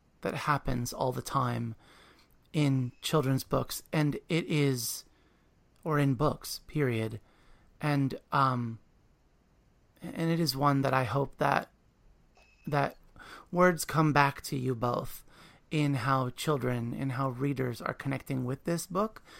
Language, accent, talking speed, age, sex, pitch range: English, American, 135 wpm, 30-49, male, 130-160 Hz